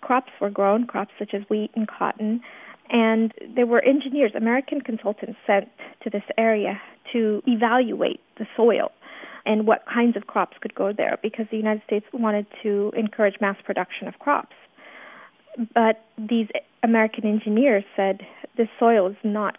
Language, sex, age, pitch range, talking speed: English, female, 40-59, 205-240 Hz, 155 wpm